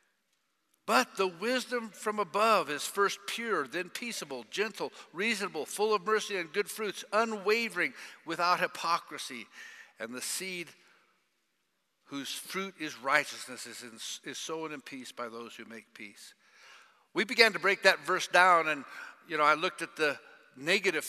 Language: English